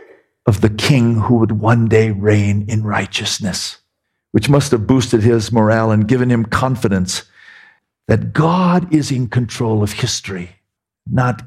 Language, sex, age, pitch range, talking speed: English, male, 50-69, 105-140 Hz, 145 wpm